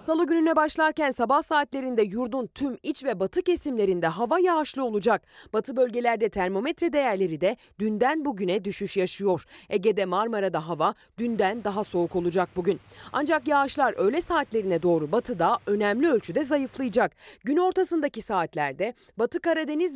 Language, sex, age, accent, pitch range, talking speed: Turkish, female, 30-49, native, 190-290 Hz, 135 wpm